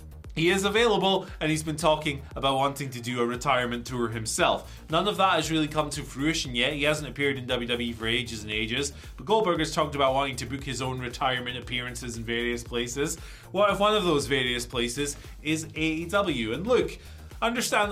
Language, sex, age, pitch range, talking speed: English, male, 20-39, 125-175 Hz, 205 wpm